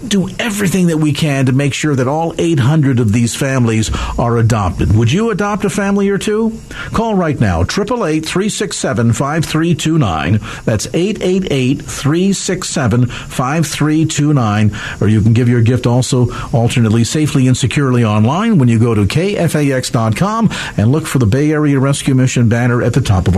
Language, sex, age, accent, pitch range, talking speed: English, male, 50-69, American, 115-155 Hz, 175 wpm